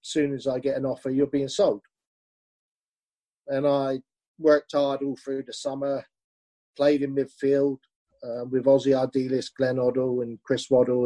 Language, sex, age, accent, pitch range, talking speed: English, male, 40-59, British, 130-155 Hz, 155 wpm